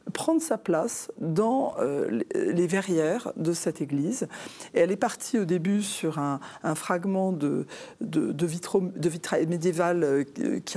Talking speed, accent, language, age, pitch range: 145 wpm, French, French, 40-59, 160-210 Hz